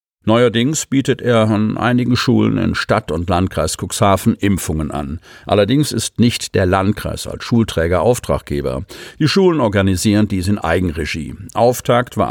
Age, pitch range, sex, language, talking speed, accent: 50-69, 90-120 Hz, male, German, 140 wpm, German